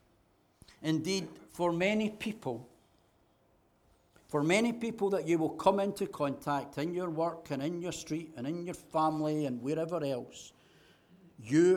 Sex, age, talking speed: male, 60-79, 145 wpm